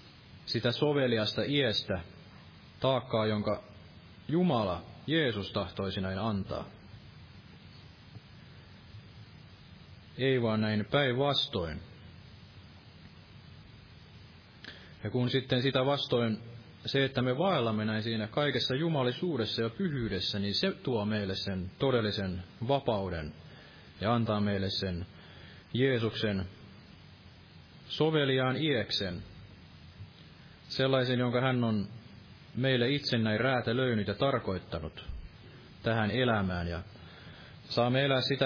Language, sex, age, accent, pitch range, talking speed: Finnish, male, 30-49, native, 95-130 Hz, 95 wpm